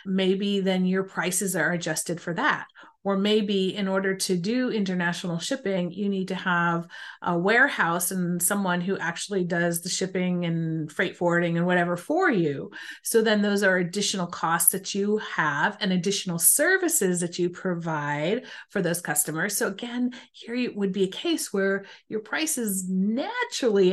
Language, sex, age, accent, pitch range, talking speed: English, female, 30-49, American, 175-215 Hz, 165 wpm